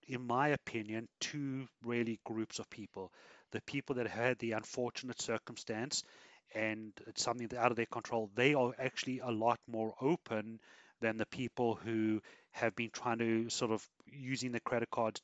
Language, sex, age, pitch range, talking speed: English, male, 30-49, 110-120 Hz, 170 wpm